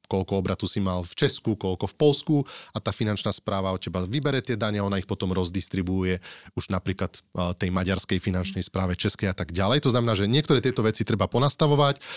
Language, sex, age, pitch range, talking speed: Slovak, male, 30-49, 100-120 Hz, 195 wpm